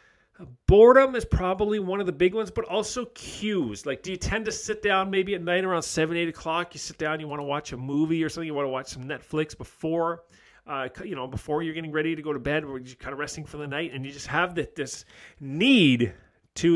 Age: 40-59